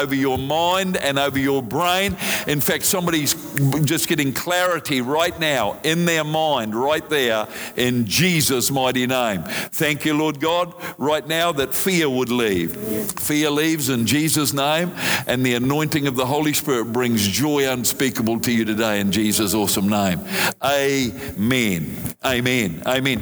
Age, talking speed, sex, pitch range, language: 50-69, 150 wpm, male, 125-160 Hz, English